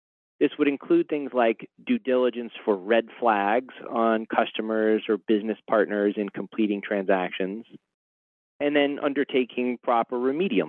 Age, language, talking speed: 40-59, English, 130 wpm